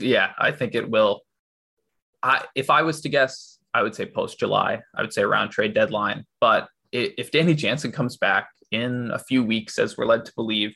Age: 20-39